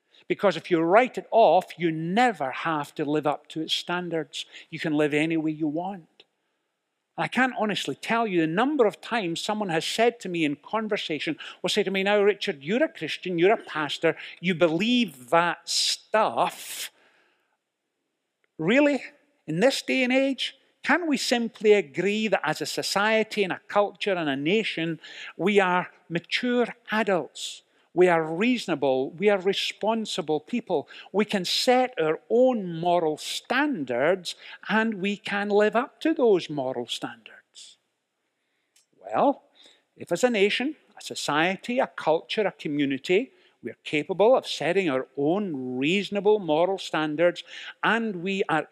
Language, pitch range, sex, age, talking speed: English, 160-220 Hz, male, 50-69, 155 wpm